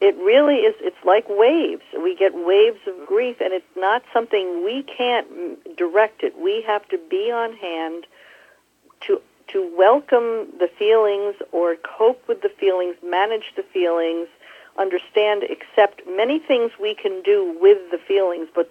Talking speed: 155 wpm